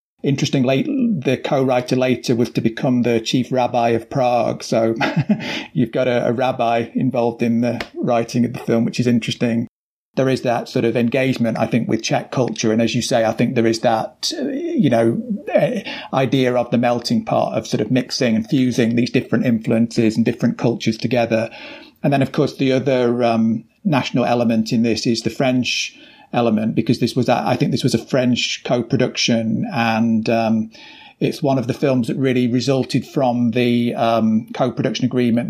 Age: 40-59